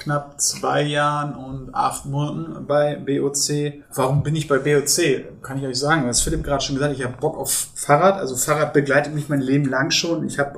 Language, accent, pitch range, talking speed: German, German, 130-150 Hz, 210 wpm